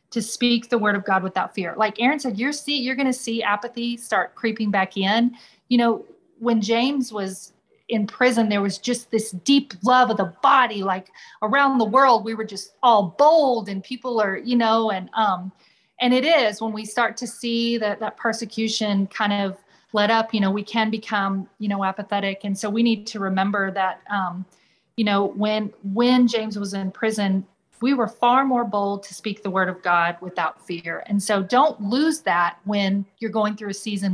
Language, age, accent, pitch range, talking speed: English, 30-49, American, 195-235 Hz, 205 wpm